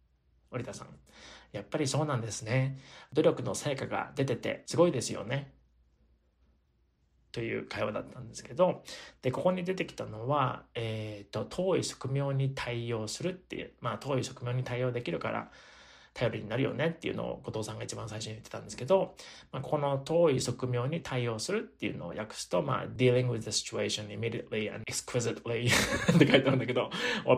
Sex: male